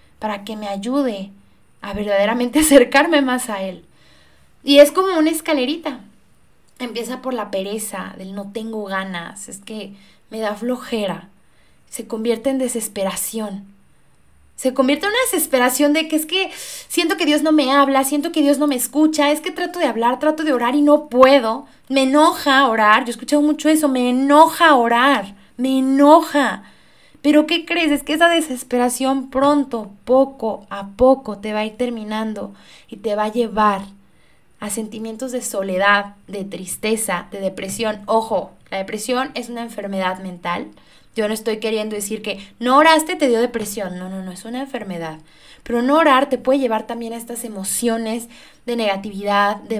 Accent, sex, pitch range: Mexican, female, 205-280 Hz